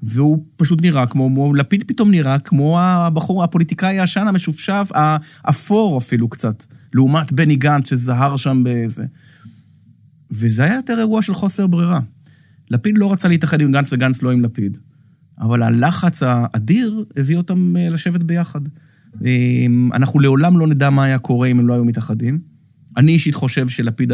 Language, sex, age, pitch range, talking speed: Hebrew, male, 30-49, 120-160 Hz, 155 wpm